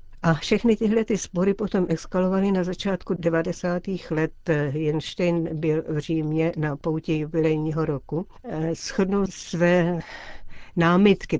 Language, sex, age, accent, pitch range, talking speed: Czech, female, 60-79, native, 155-175 Hz, 115 wpm